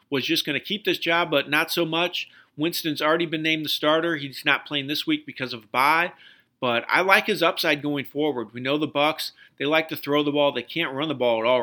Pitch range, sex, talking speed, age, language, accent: 130-185 Hz, male, 260 wpm, 40-59, English, American